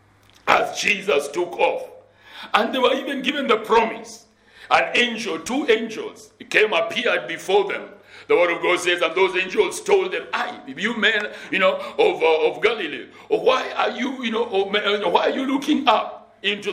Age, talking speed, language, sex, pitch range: 60-79, 175 wpm, English, male, 195-305 Hz